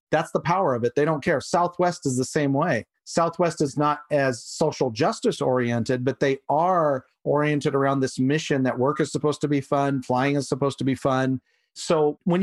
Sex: male